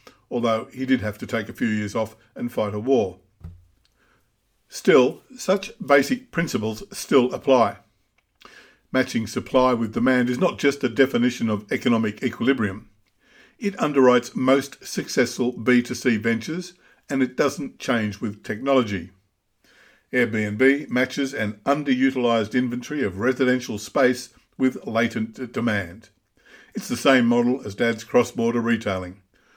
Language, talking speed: English, 130 wpm